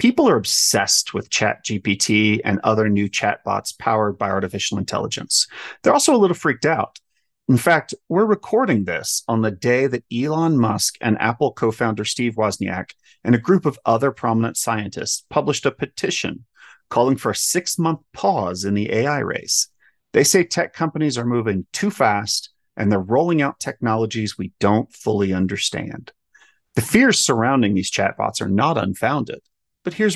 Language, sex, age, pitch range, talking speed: English, male, 30-49, 105-140 Hz, 160 wpm